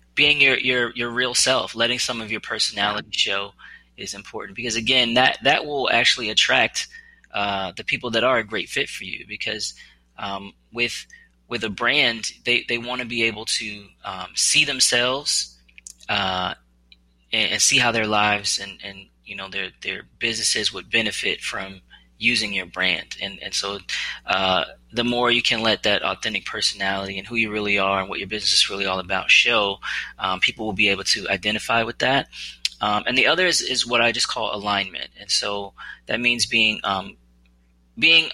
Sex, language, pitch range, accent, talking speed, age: male, English, 95-120 Hz, American, 190 wpm, 20-39